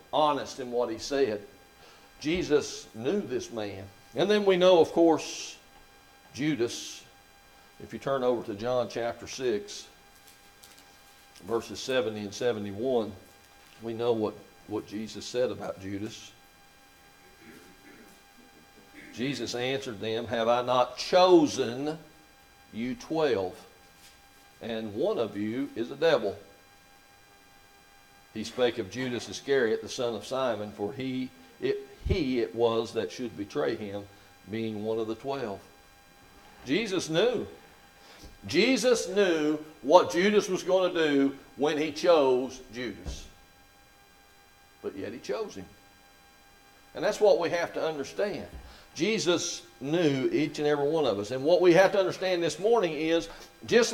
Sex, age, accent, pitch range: male, 60-79, American, 100-170 Hz